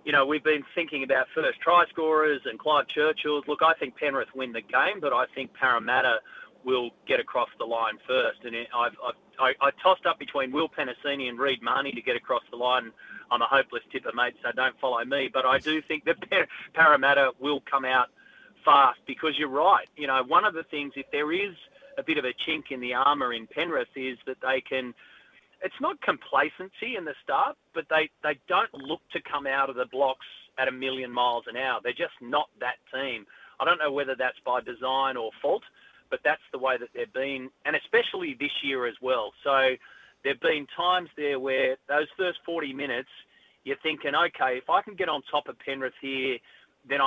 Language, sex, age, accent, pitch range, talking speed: English, male, 30-49, Australian, 130-160 Hz, 210 wpm